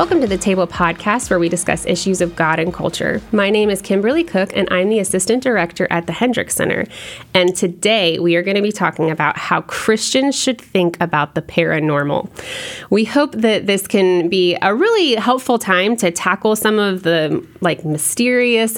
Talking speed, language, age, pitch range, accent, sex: 190 wpm, English, 20-39, 170-220 Hz, American, female